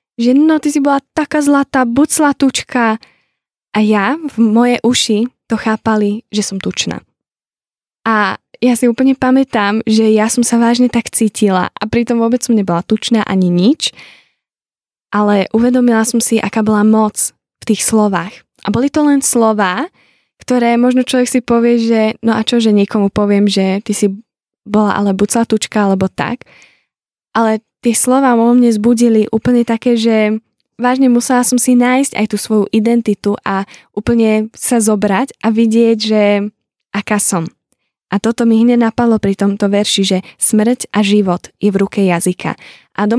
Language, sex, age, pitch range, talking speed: Czech, female, 10-29, 210-245 Hz, 170 wpm